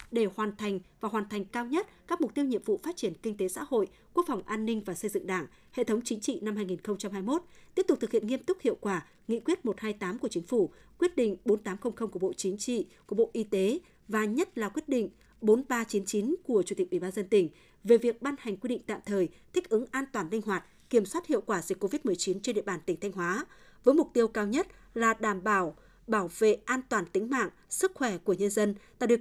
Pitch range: 200-255 Hz